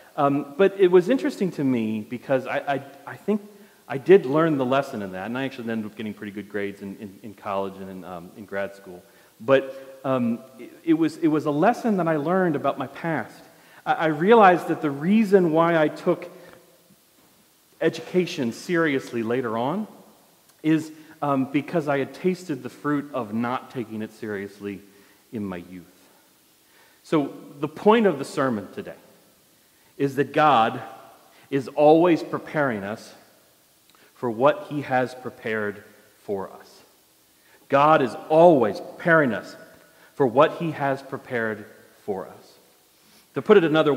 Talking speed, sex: 160 wpm, male